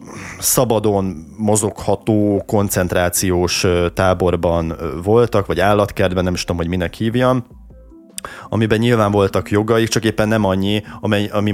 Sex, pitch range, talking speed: male, 90-110 Hz, 115 wpm